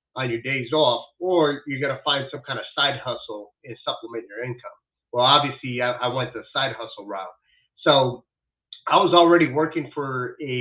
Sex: male